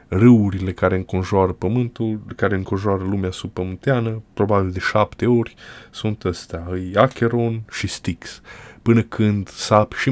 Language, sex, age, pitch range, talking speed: Romanian, male, 20-39, 95-120 Hz, 125 wpm